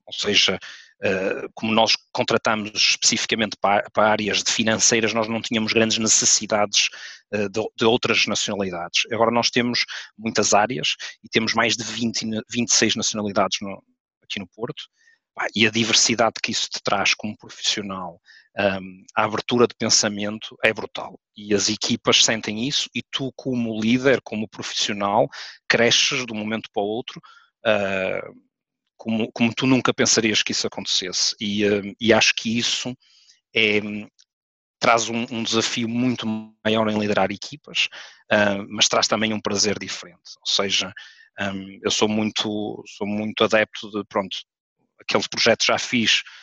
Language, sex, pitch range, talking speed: Portuguese, male, 105-115 Hz, 140 wpm